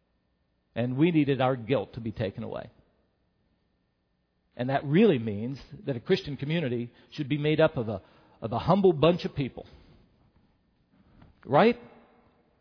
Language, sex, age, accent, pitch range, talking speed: English, male, 50-69, American, 150-250 Hz, 145 wpm